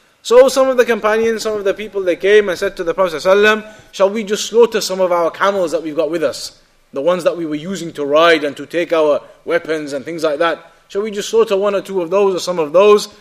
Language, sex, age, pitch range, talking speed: English, male, 30-49, 185-245 Hz, 275 wpm